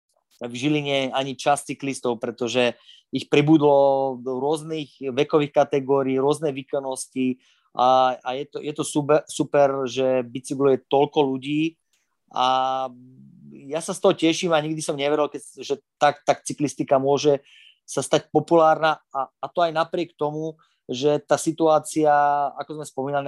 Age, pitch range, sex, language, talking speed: 20-39, 135-150 Hz, male, Slovak, 145 wpm